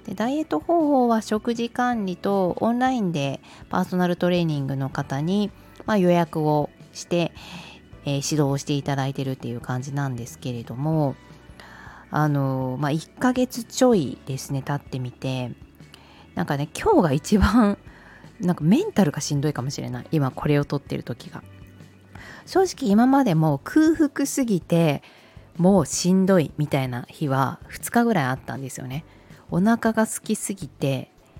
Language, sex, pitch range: Japanese, female, 135-200 Hz